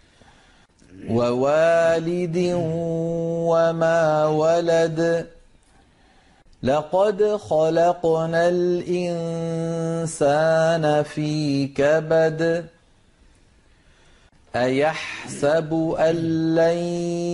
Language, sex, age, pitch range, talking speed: Arabic, male, 40-59, 160-175 Hz, 35 wpm